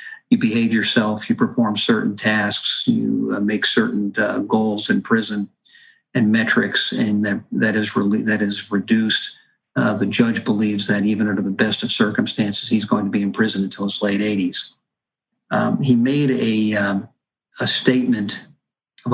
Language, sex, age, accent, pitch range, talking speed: English, male, 50-69, American, 105-130 Hz, 165 wpm